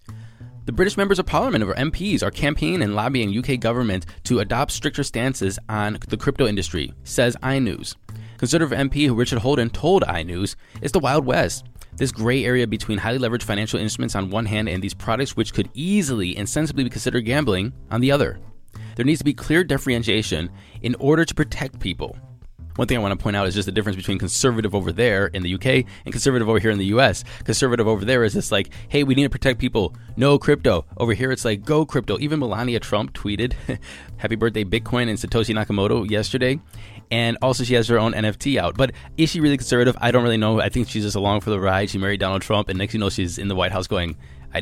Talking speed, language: 220 wpm, English